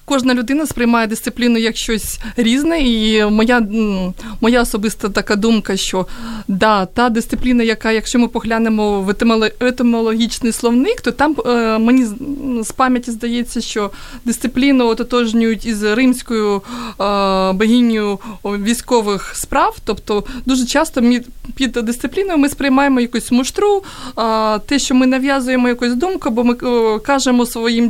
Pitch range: 220-260 Hz